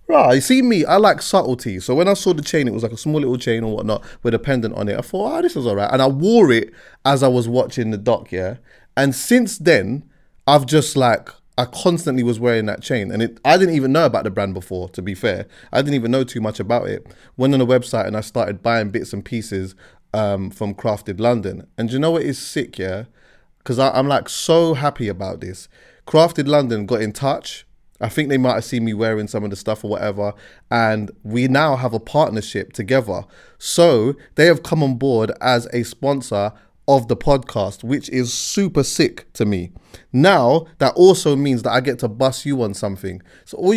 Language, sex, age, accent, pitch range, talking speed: English, male, 20-39, British, 110-145 Hz, 230 wpm